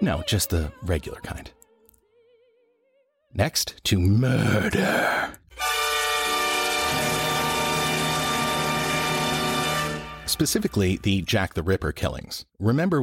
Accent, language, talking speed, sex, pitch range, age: American, English, 70 wpm, male, 85-105 Hz, 40-59